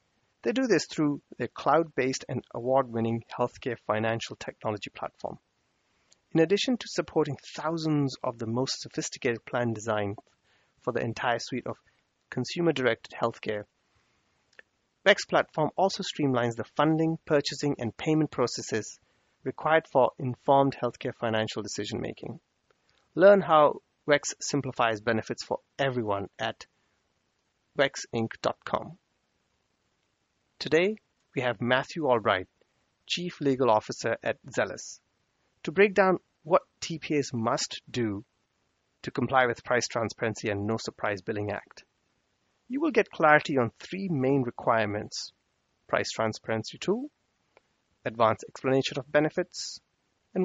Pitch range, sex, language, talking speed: 115-155 Hz, male, English, 115 wpm